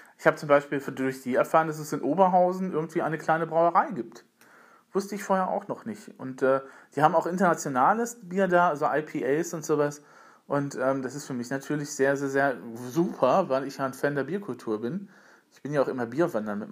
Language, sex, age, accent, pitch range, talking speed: German, male, 40-59, German, 135-170 Hz, 215 wpm